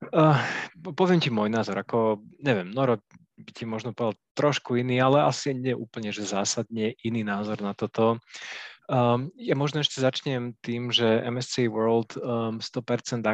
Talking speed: 155 wpm